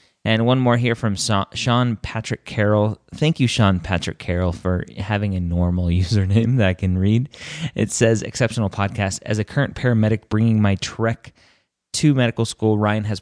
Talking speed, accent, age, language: 170 wpm, American, 30-49, English